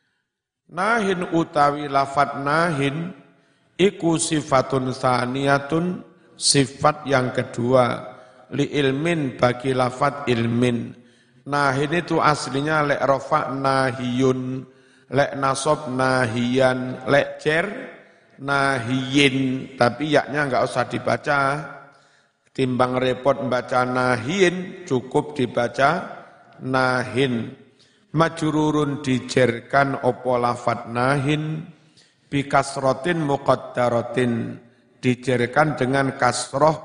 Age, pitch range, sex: 50-69, 125-150 Hz, male